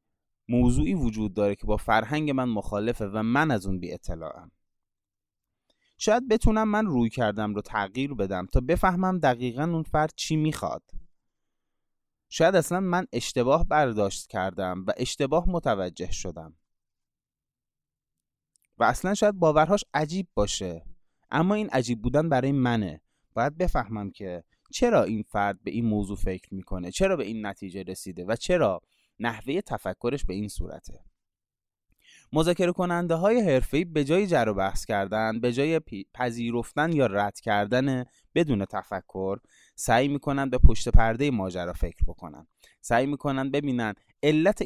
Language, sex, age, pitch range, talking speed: Persian, male, 20-39, 100-150 Hz, 140 wpm